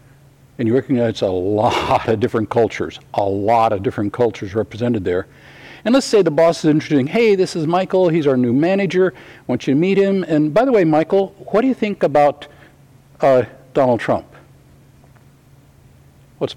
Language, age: English, 60-79